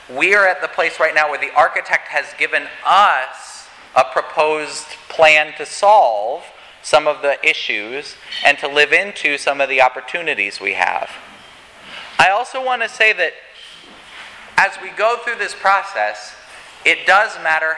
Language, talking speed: English, 160 wpm